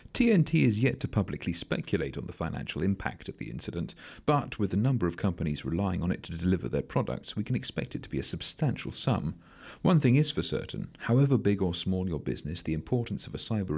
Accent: British